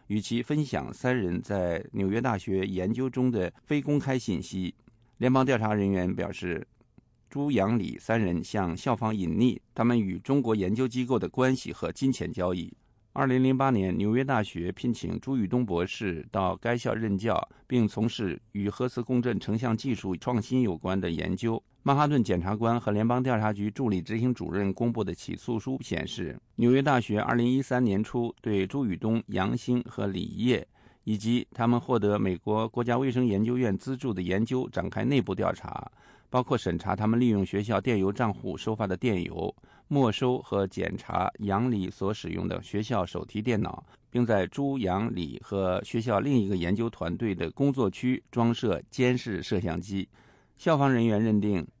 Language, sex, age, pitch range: English, male, 50-69, 95-125 Hz